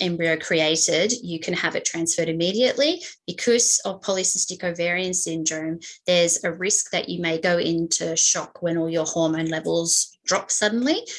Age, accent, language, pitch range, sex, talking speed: 20-39, Australian, English, 165-210 Hz, female, 155 wpm